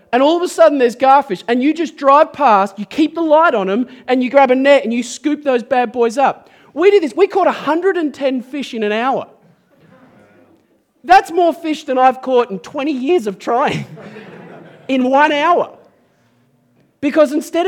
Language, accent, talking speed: English, Australian, 190 wpm